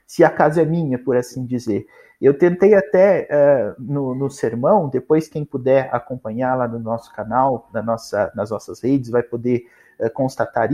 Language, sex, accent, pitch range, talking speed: Portuguese, male, Brazilian, 140-200 Hz, 155 wpm